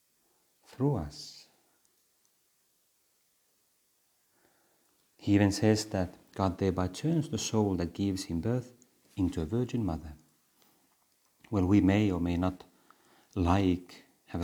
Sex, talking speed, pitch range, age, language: male, 110 wpm, 95-130 Hz, 40-59, Finnish